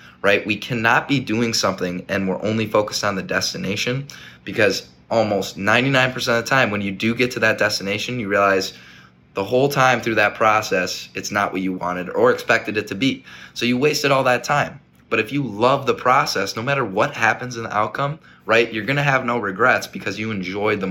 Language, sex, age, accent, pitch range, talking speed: English, male, 20-39, American, 95-115 Hz, 215 wpm